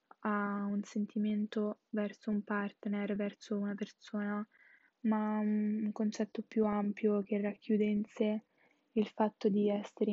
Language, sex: Italian, female